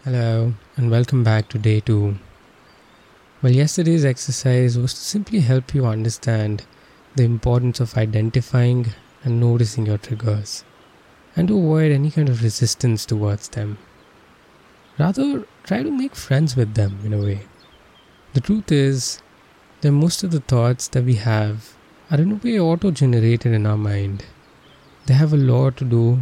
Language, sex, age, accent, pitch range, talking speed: English, male, 20-39, Indian, 110-140 Hz, 155 wpm